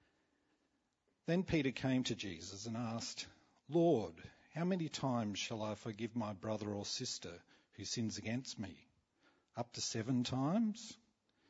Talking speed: 135 wpm